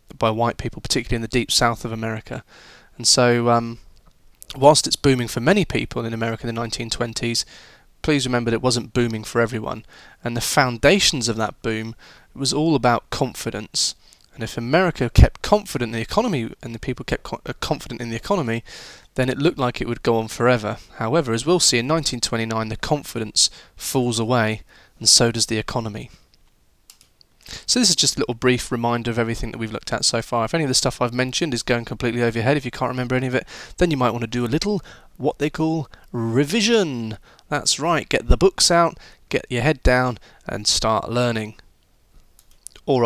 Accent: British